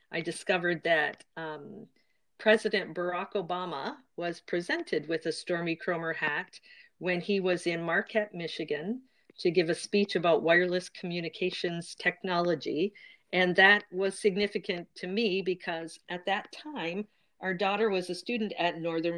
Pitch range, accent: 165-195 Hz, American